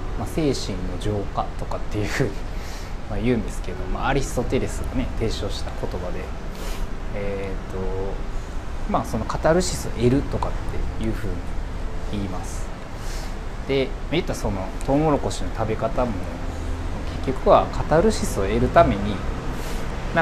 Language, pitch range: Japanese, 85-120 Hz